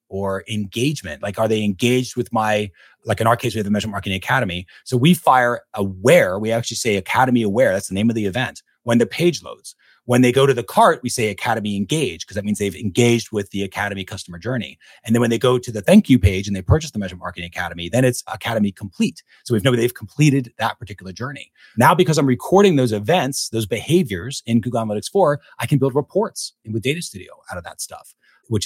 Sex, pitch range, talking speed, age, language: male, 105-135 Hz, 230 wpm, 30-49, English